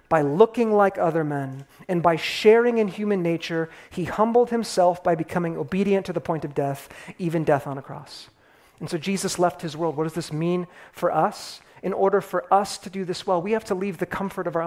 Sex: male